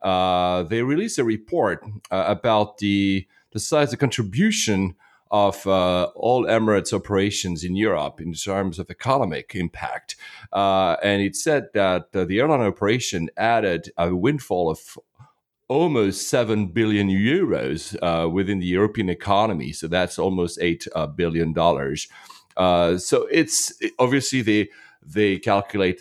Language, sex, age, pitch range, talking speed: English, male, 40-59, 90-115 Hz, 135 wpm